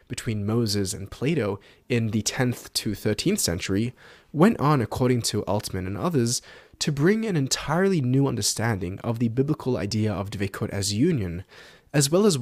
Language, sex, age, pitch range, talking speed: English, male, 20-39, 105-140 Hz, 165 wpm